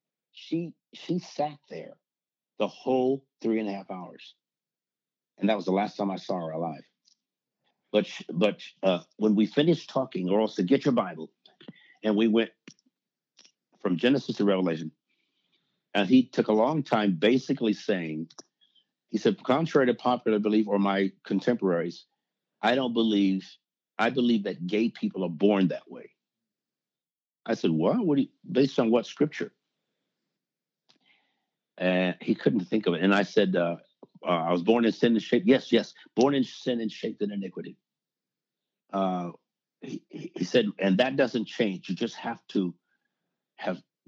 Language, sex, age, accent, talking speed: English, male, 60-79, American, 165 wpm